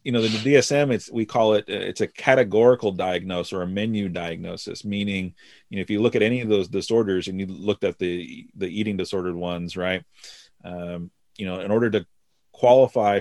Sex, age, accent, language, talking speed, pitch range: male, 30-49, American, English, 200 wpm, 90-110 Hz